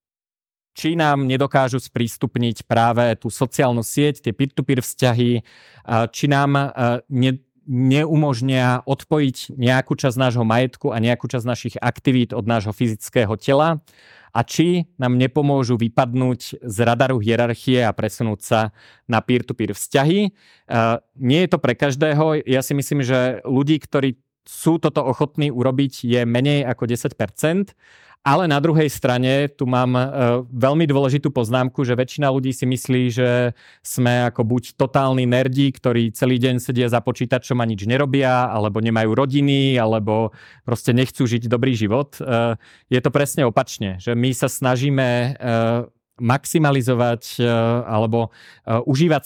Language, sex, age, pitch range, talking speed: Slovak, male, 30-49, 120-140 Hz, 140 wpm